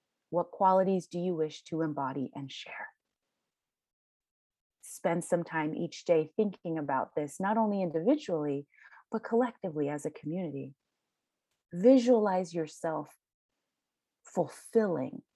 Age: 30-49